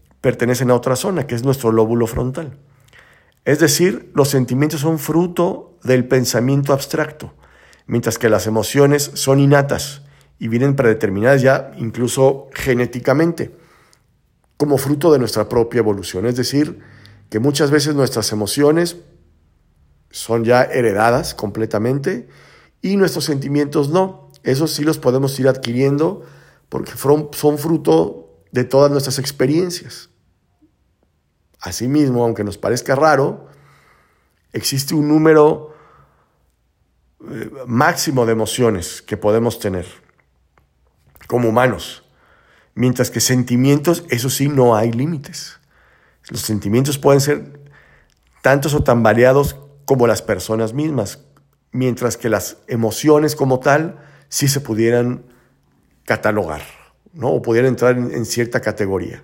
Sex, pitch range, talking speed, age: male, 110-145 Hz, 115 wpm, 50-69